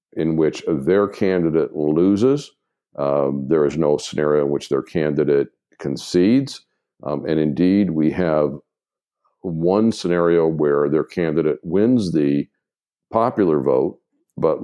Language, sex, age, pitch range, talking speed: English, male, 50-69, 75-105 Hz, 125 wpm